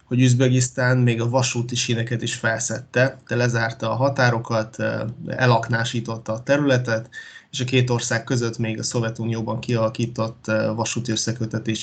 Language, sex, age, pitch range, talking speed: Hungarian, male, 20-39, 115-125 Hz, 130 wpm